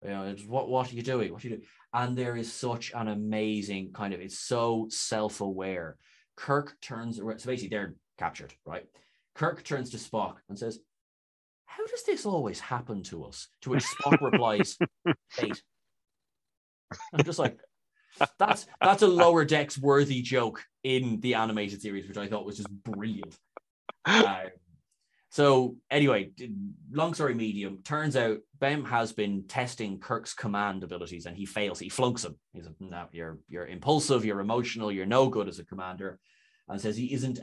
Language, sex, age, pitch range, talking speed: English, male, 20-39, 95-125 Hz, 175 wpm